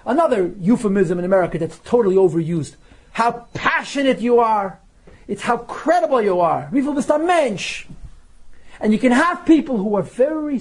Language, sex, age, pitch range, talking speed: English, male, 50-69, 170-235 Hz, 135 wpm